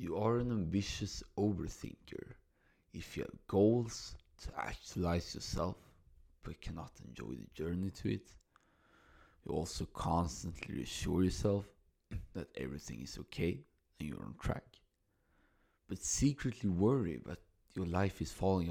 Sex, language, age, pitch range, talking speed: male, English, 30-49, 85-110 Hz, 130 wpm